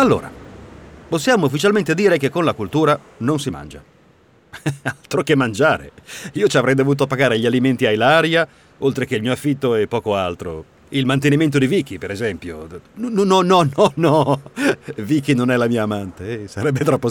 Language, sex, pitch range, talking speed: Italian, male, 95-145 Hz, 180 wpm